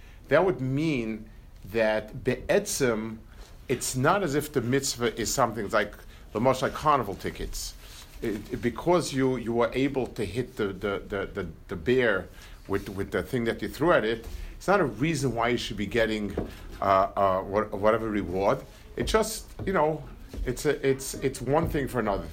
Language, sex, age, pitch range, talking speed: English, male, 50-69, 105-140 Hz, 185 wpm